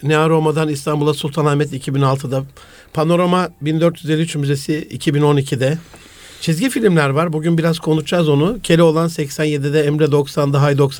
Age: 60-79